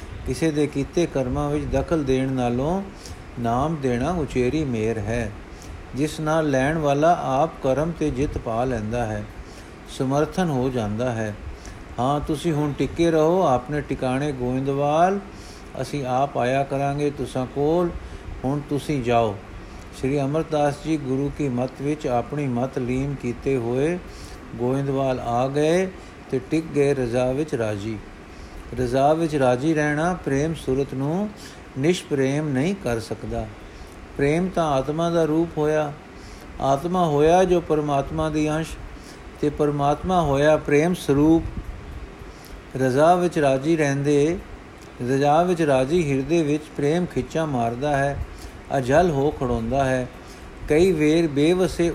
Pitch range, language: 125-155 Hz, Punjabi